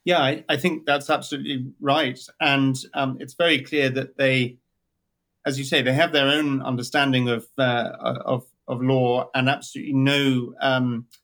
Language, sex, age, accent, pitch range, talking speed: English, male, 30-49, British, 125-140 Hz, 165 wpm